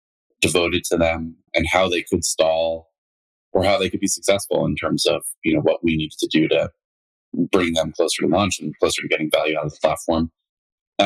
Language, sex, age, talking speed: English, male, 30-49, 215 wpm